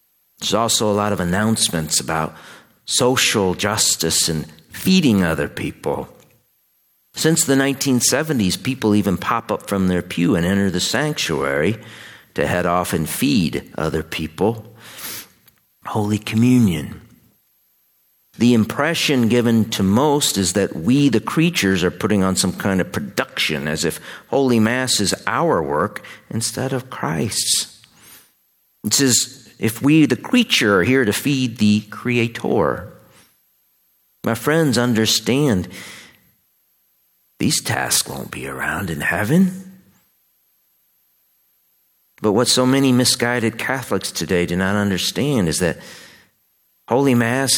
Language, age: English, 50-69